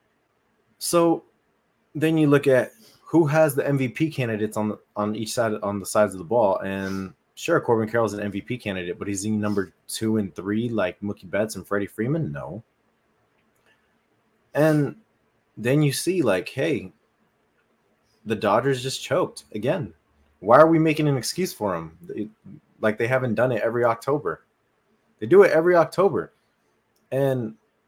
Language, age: English, 20-39